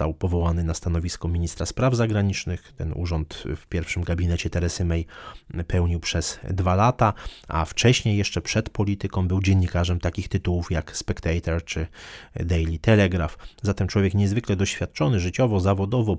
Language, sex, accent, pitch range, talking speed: Polish, male, native, 90-105 Hz, 140 wpm